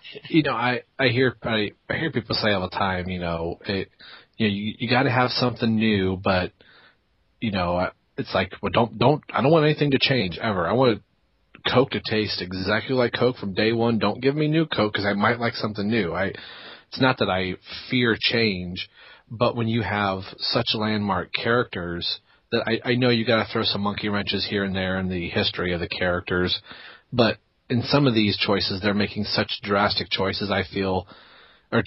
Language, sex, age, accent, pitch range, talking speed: English, male, 30-49, American, 100-115 Hz, 205 wpm